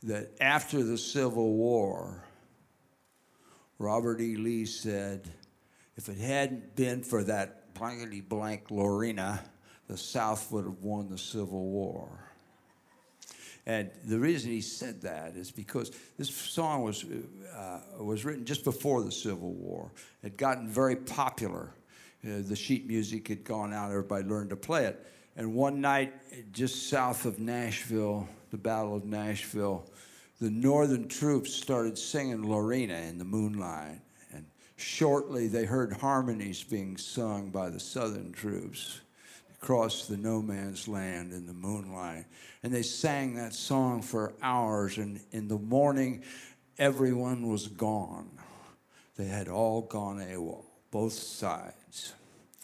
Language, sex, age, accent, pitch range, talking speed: English, male, 60-79, American, 100-125 Hz, 140 wpm